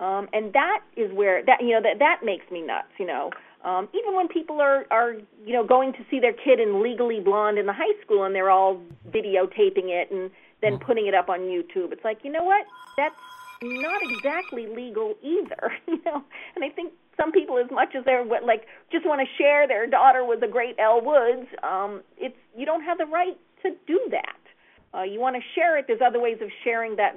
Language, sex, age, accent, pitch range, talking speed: English, female, 40-59, American, 200-290 Hz, 225 wpm